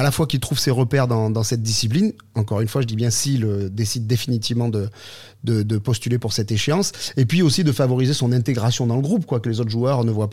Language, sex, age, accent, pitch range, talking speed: French, male, 30-49, French, 110-130 Hz, 250 wpm